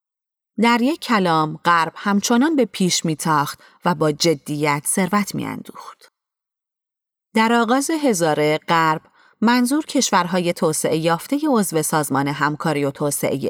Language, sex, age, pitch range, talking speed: Persian, female, 30-49, 155-230 Hz, 115 wpm